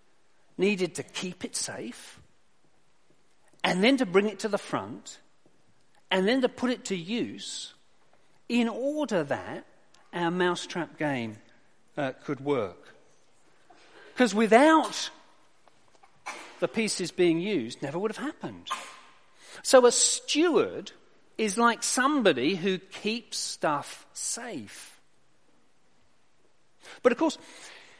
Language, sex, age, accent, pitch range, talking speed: English, male, 50-69, British, 185-265 Hz, 110 wpm